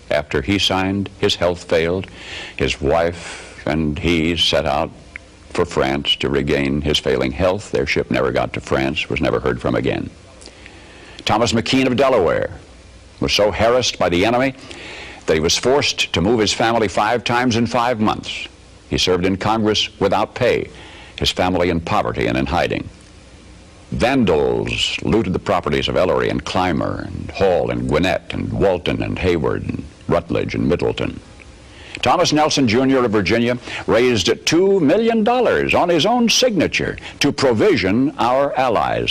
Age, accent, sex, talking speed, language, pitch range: 60-79, American, male, 155 wpm, English, 90-120 Hz